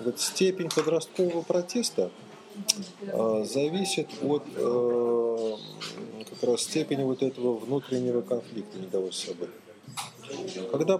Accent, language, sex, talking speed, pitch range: native, Russian, male, 95 wpm, 120-170 Hz